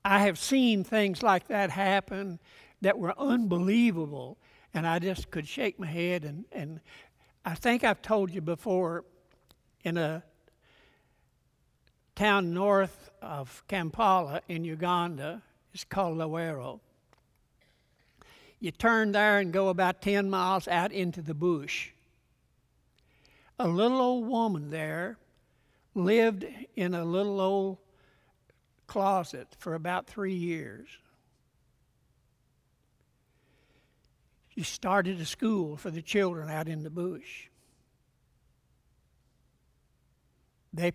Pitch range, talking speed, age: 160-200 Hz, 110 wpm, 60-79